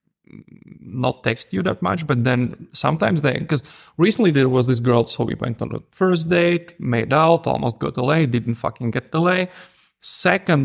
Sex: male